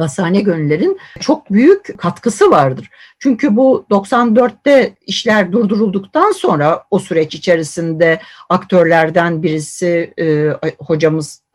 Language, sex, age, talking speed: Turkish, female, 60-79, 95 wpm